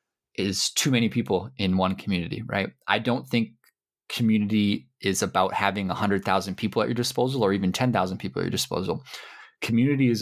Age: 20-39